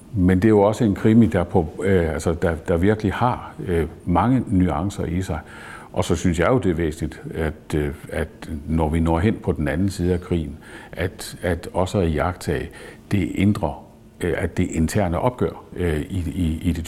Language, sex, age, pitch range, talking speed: Danish, male, 60-79, 80-100 Hz, 175 wpm